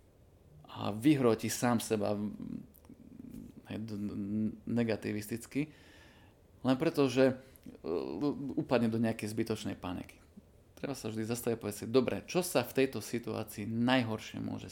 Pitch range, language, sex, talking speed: 100-130 Hz, Slovak, male, 115 wpm